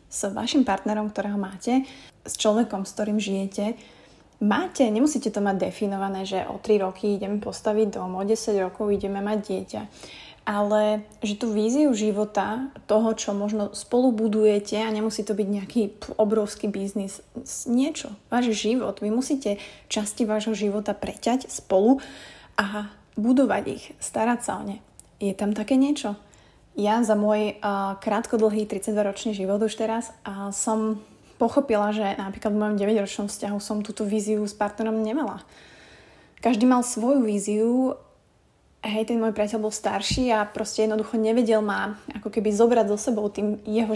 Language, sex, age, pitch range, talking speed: Slovak, female, 30-49, 205-225 Hz, 155 wpm